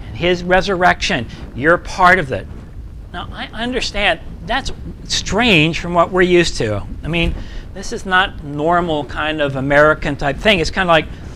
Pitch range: 125-180 Hz